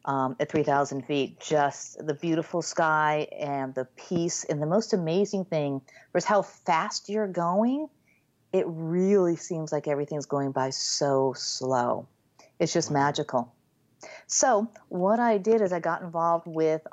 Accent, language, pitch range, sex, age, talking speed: American, English, 145-175 Hz, female, 40-59, 150 wpm